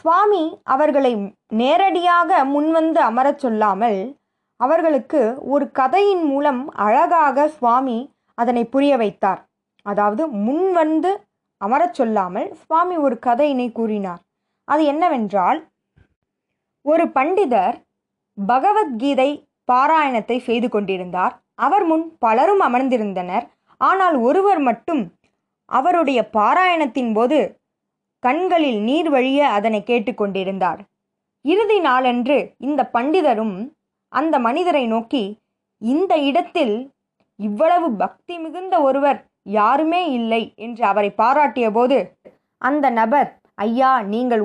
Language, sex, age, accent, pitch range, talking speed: Tamil, female, 20-39, native, 220-315 Hz, 90 wpm